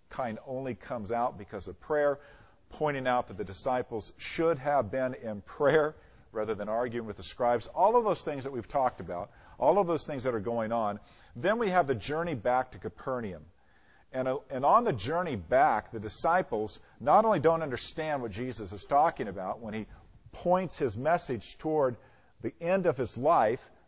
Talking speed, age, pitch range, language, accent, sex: 190 wpm, 50-69, 110-145 Hz, English, American, male